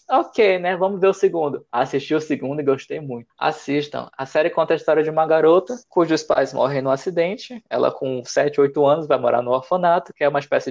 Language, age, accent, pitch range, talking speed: Portuguese, 20-39, Brazilian, 140-190 Hz, 220 wpm